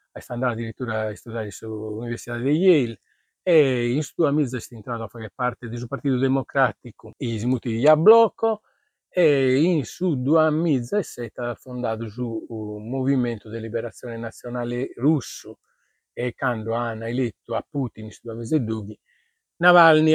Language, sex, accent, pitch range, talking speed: Italian, male, native, 115-130 Hz, 160 wpm